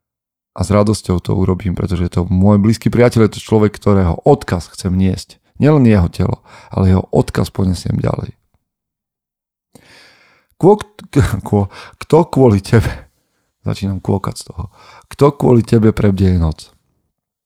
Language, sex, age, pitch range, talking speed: Slovak, male, 40-59, 95-115 Hz, 135 wpm